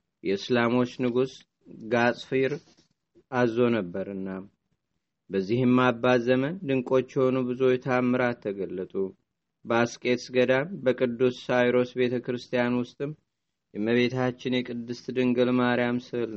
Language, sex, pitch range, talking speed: Amharic, male, 120-130 Hz, 90 wpm